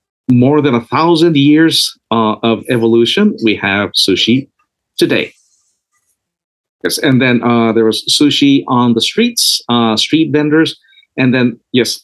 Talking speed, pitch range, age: 140 wpm, 110-145 Hz, 50-69